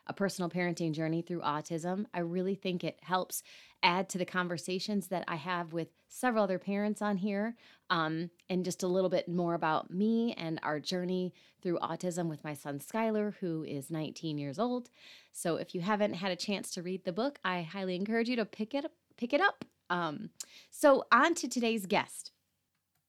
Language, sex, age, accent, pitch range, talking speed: English, female, 30-49, American, 160-200 Hz, 195 wpm